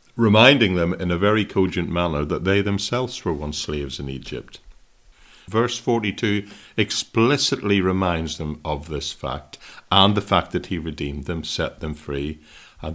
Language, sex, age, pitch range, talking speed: English, male, 50-69, 75-100 Hz, 160 wpm